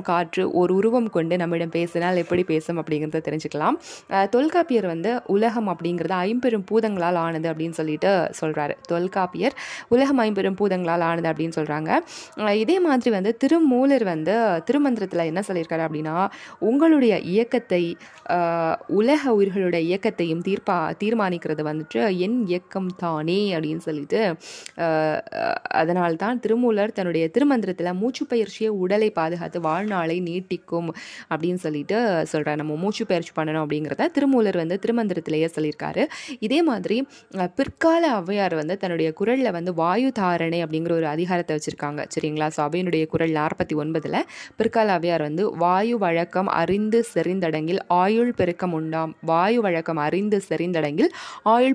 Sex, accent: female, native